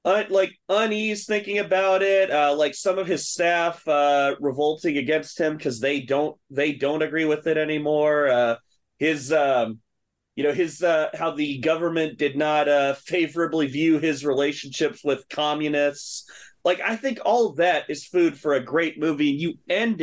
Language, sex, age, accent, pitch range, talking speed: English, male, 30-49, American, 140-185 Hz, 170 wpm